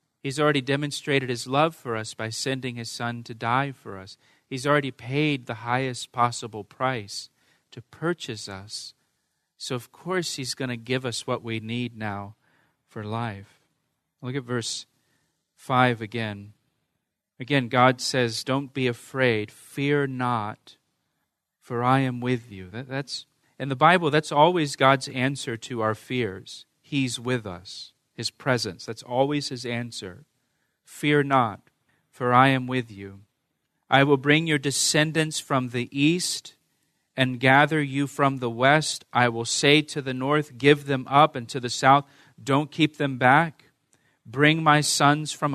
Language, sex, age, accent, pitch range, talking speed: English, male, 40-59, American, 120-145 Hz, 155 wpm